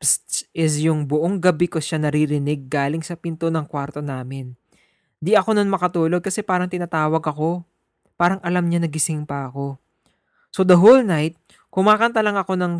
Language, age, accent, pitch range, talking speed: English, 20-39, Filipino, 150-185 Hz, 165 wpm